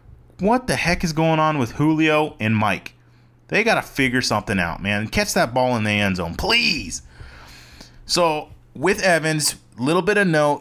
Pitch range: 105-150 Hz